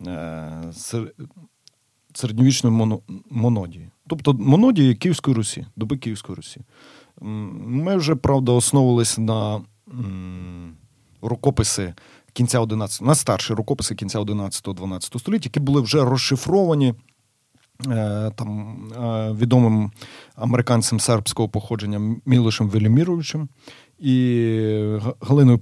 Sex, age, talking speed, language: male, 40-59, 85 wpm, Ukrainian